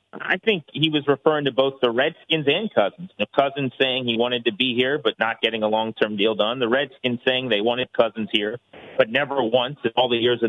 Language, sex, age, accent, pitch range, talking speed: English, male, 30-49, American, 115-135 Hz, 235 wpm